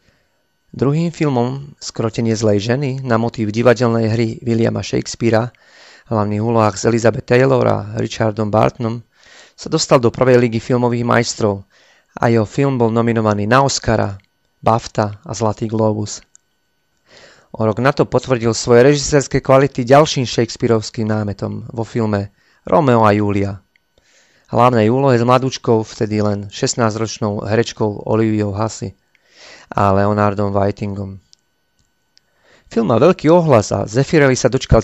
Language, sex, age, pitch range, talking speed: Slovak, male, 30-49, 105-125 Hz, 125 wpm